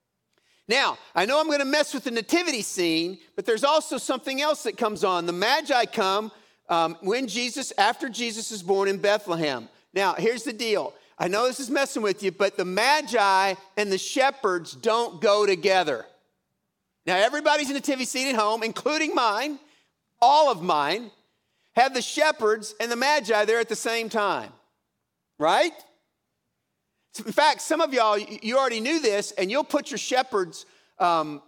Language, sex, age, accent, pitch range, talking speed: English, male, 50-69, American, 205-280 Hz, 170 wpm